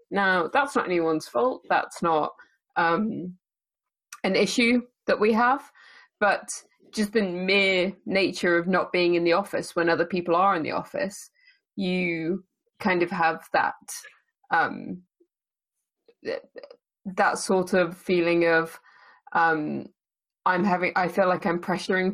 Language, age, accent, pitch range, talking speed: English, 20-39, British, 175-230 Hz, 135 wpm